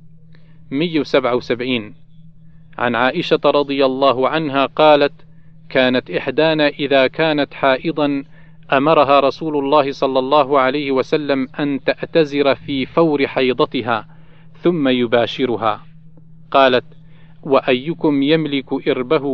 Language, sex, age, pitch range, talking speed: Arabic, male, 40-59, 130-160 Hz, 95 wpm